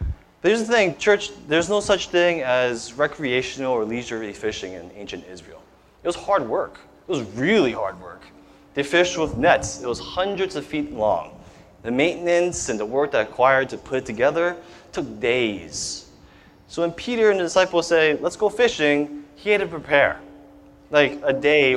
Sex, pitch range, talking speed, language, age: male, 125-185 Hz, 180 wpm, English, 20-39